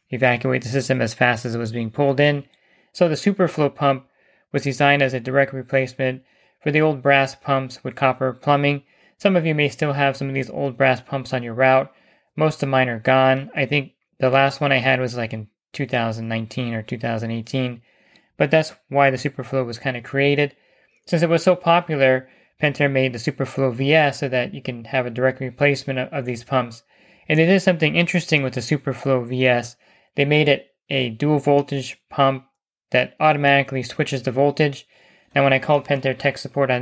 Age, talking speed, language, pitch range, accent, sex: 20-39, 200 wpm, English, 130-145 Hz, American, male